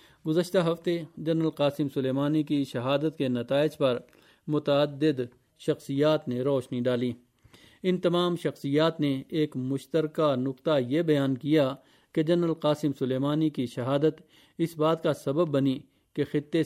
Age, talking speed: 50-69, 135 wpm